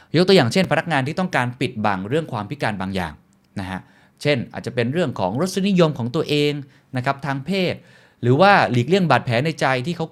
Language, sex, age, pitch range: Thai, male, 20-39, 105-150 Hz